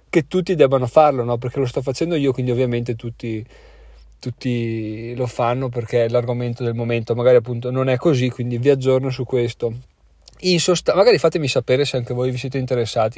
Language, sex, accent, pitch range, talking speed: Italian, male, native, 120-150 Hz, 180 wpm